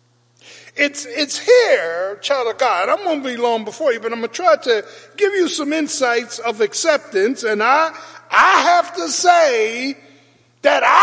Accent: American